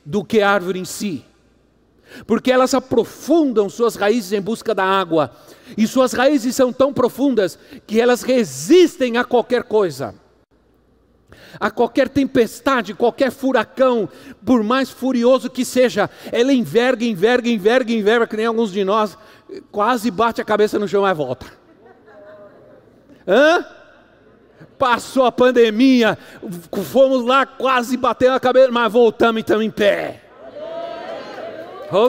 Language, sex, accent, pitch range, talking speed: Portuguese, male, Brazilian, 200-255 Hz, 135 wpm